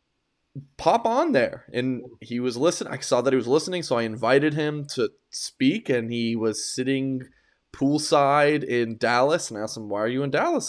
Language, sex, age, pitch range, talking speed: English, male, 20-39, 120-170 Hz, 190 wpm